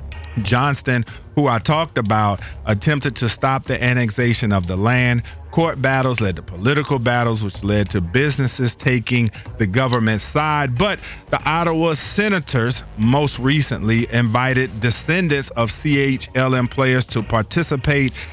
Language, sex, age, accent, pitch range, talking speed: English, male, 40-59, American, 110-135 Hz, 130 wpm